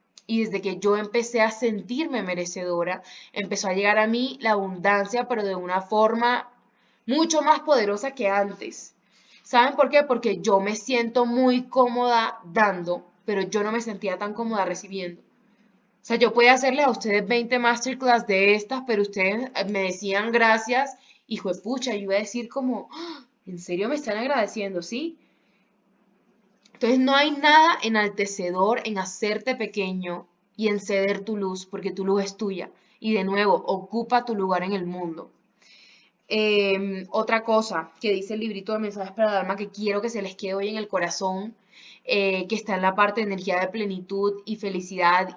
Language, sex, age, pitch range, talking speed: Spanish, female, 10-29, 195-235 Hz, 175 wpm